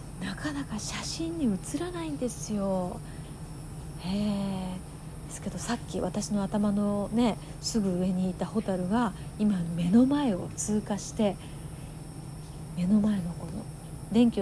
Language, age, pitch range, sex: Japanese, 40-59, 150-210 Hz, female